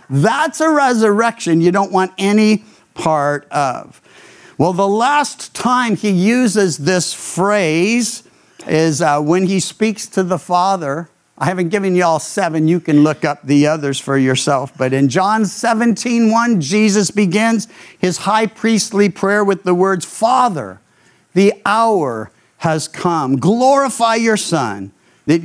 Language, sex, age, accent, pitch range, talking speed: English, male, 50-69, American, 170-230 Hz, 145 wpm